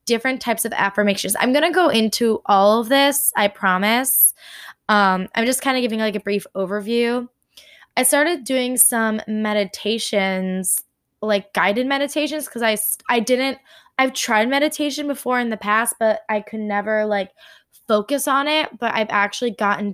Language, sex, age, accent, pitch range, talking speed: English, female, 20-39, American, 205-260 Hz, 165 wpm